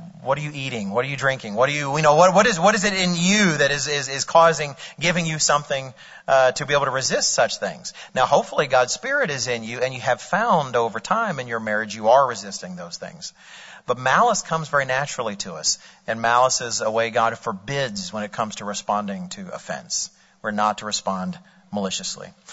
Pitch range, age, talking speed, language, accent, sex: 130-180 Hz, 40-59, 225 wpm, English, American, male